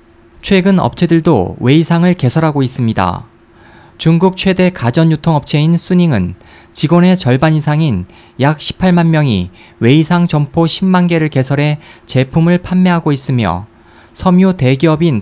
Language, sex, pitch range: Korean, male, 120-170 Hz